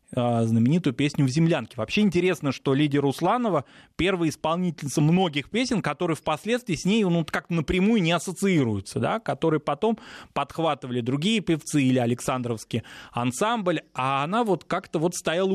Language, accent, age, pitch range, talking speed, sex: Russian, native, 20-39, 130-170 Hz, 145 wpm, male